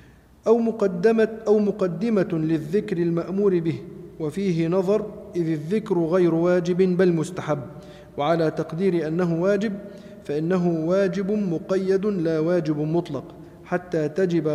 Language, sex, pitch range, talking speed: Arabic, male, 155-195 Hz, 105 wpm